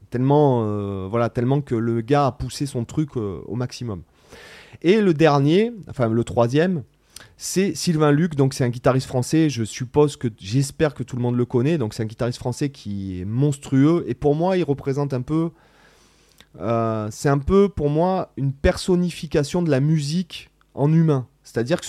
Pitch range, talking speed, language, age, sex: 115-155 Hz, 185 wpm, French, 30-49, male